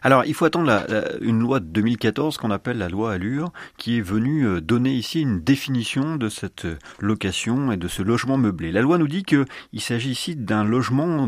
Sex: male